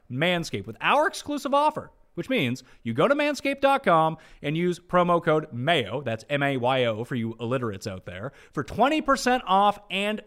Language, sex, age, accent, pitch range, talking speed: English, male, 30-49, American, 140-225 Hz, 160 wpm